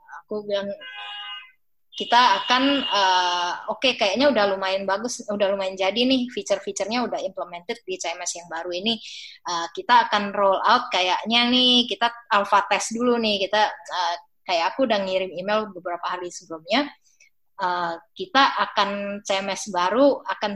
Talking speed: 150 wpm